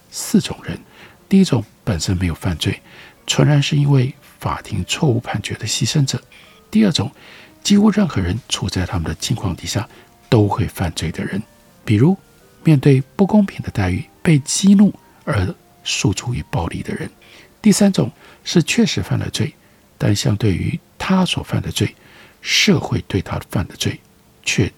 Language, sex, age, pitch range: Chinese, male, 60-79, 100-160 Hz